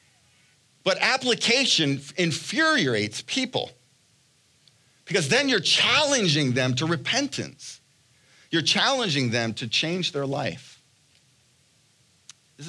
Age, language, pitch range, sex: 50-69, English, 115-145 Hz, male